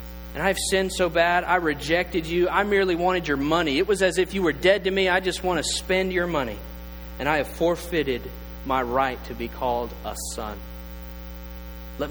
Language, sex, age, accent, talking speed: English, male, 40-59, American, 210 wpm